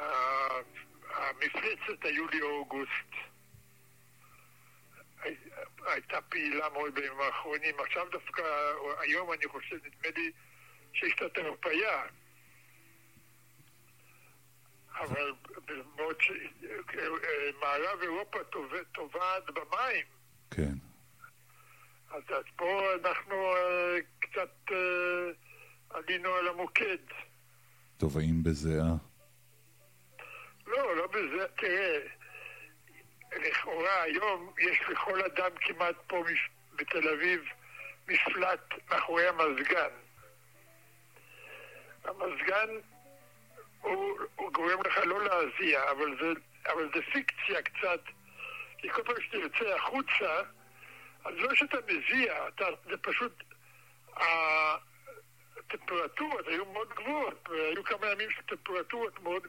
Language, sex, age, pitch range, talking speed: Hebrew, male, 60-79, 125-190 Hz, 80 wpm